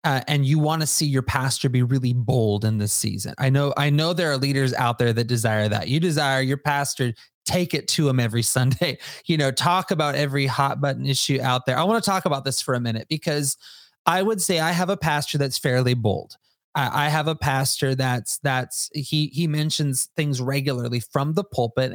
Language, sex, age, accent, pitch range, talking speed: English, male, 30-49, American, 130-165 Hz, 220 wpm